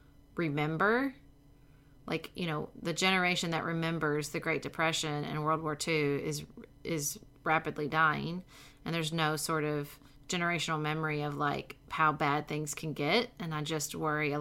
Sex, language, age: female, English, 30-49